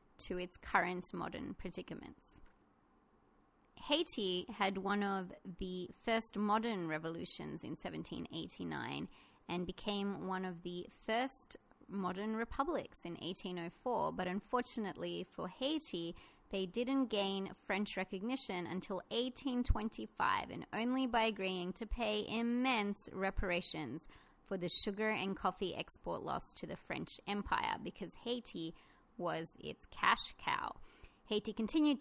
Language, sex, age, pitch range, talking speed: English, female, 20-39, 185-235 Hz, 120 wpm